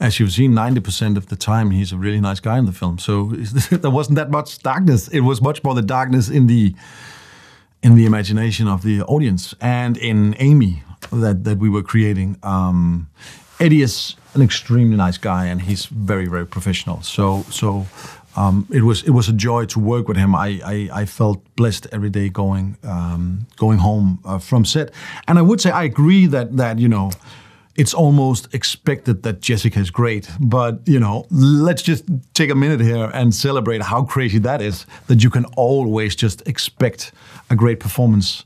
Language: English